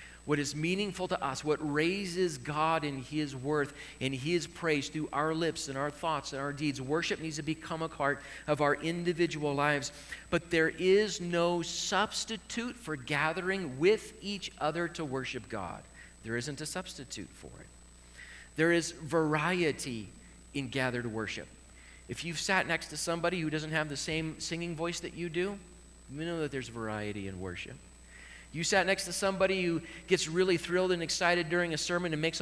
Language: English